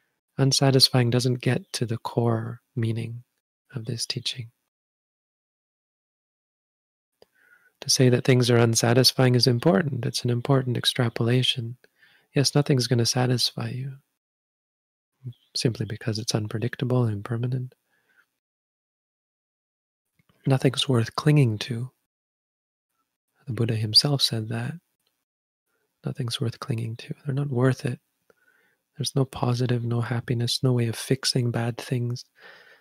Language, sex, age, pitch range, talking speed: English, male, 30-49, 115-135 Hz, 115 wpm